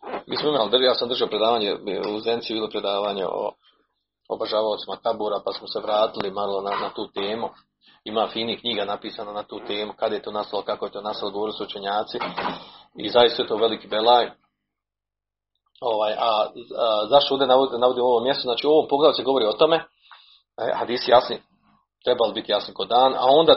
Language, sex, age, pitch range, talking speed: Croatian, male, 40-59, 110-155 Hz, 190 wpm